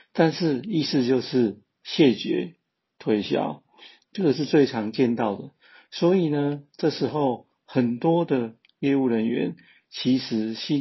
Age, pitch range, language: 50-69, 115-150 Hz, Chinese